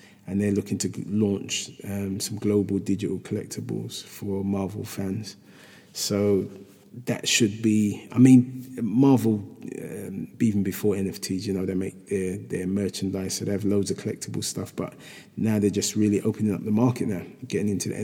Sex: male